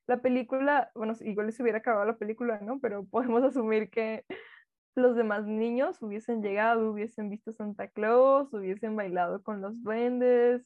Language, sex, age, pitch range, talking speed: Spanish, female, 10-29, 205-245 Hz, 160 wpm